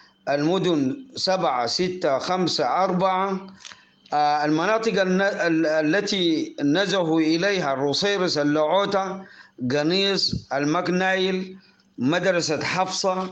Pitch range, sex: 155-195 Hz, male